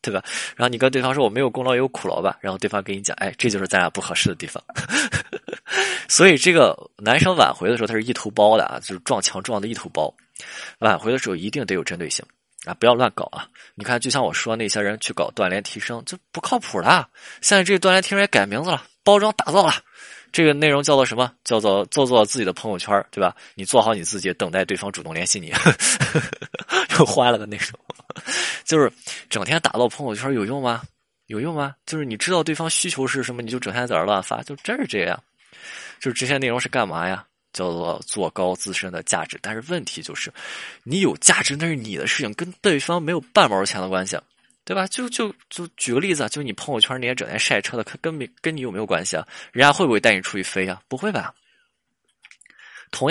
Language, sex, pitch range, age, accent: Chinese, male, 105-155 Hz, 20-39, native